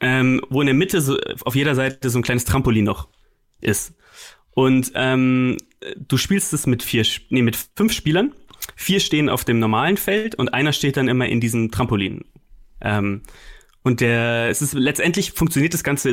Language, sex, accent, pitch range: German, male, German, 120-155 Hz